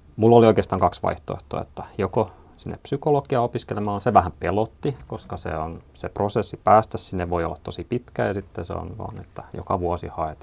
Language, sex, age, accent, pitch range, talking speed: Finnish, male, 30-49, native, 85-105 Hz, 190 wpm